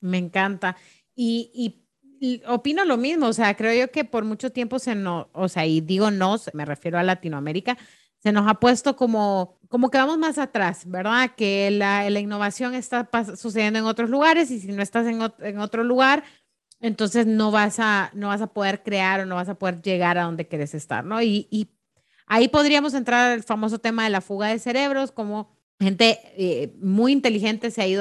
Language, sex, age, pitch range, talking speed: Spanish, female, 30-49, 185-235 Hz, 205 wpm